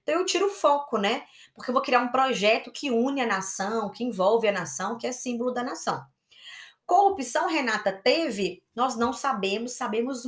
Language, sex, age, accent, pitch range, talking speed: Portuguese, female, 20-39, Brazilian, 180-255 Hz, 185 wpm